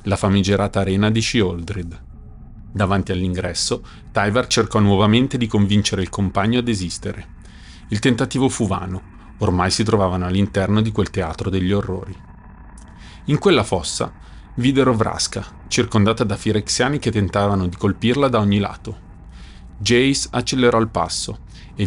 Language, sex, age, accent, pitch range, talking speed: Italian, male, 30-49, native, 95-115 Hz, 135 wpm